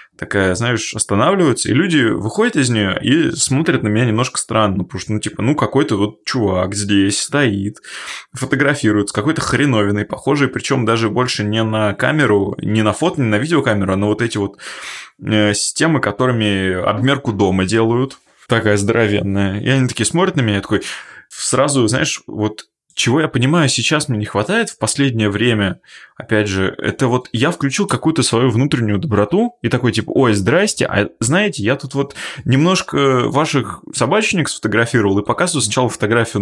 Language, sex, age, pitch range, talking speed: Russian, male, 20-39, 105-135 Hz, 165 wpm